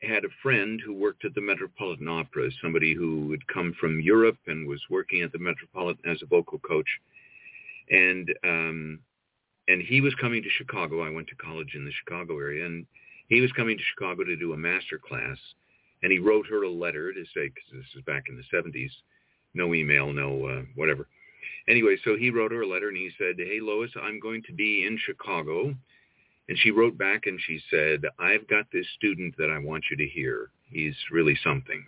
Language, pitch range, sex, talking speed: English, 90-125 Hz, male, 205 wpm